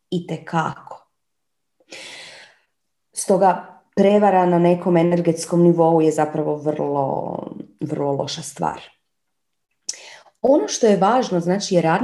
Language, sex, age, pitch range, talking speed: Croatian, female, 30-49, 155-210 Hz, 105 wpm